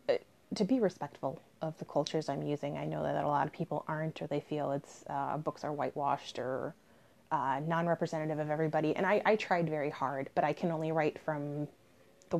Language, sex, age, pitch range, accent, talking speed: English, female, 20-39, 155-180 Hz, American, 205 wpm